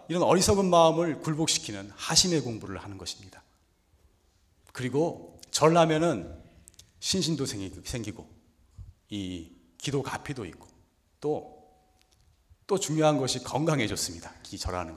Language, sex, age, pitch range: Korean, male, 40-59, 90-125 Hz